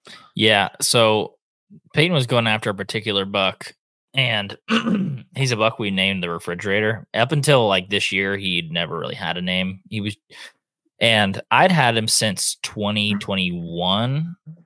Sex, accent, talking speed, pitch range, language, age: male, American, 145 wpm, 95-120 Hz, English, 20-39